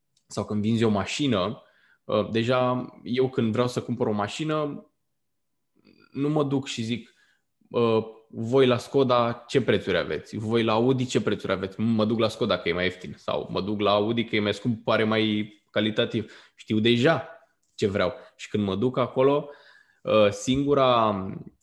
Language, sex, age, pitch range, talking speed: Romanian, male, 20-39, 110-135 Hz, 165 wpm